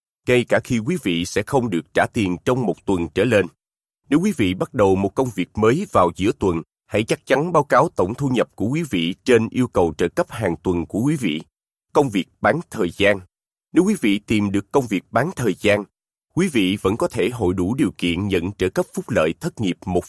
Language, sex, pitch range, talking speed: Vietnamese, male, 90-135 Hz, 240 wpm